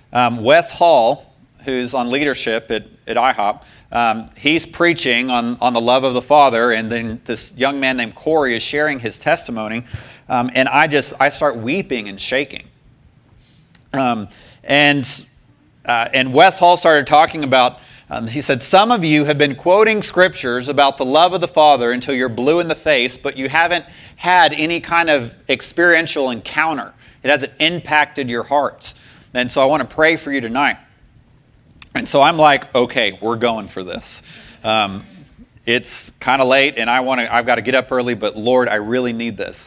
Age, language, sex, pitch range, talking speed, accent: 30-49, English, male, 120-150 Hz, 185 wpm, American